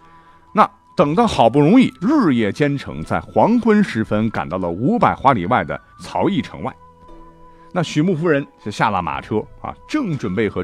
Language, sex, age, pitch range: Chinese, male, 50-69, 100-165 Hz